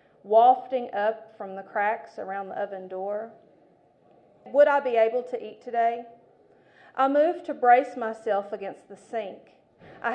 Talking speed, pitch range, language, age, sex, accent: 150 wpm, 210-255 Hz, English, 40-59, female, American